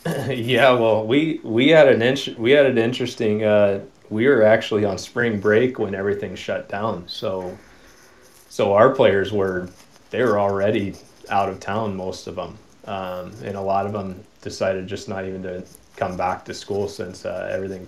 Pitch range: 95-105 Hz